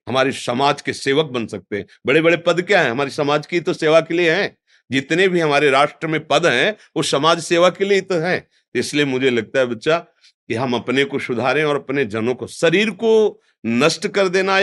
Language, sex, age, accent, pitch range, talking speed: Hindi, male, 50-69, native, 115-155 Hz, 215 wpm